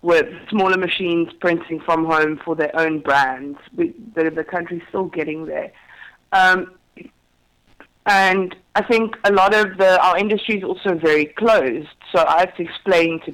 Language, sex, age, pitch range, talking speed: English, female, 20-39, 155-190 Hz, 165 wpm